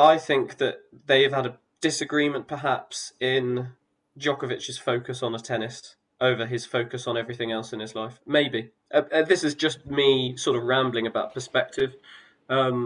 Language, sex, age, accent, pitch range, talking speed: English, male, 20-39, British, 115-135 Hz, 165 wpm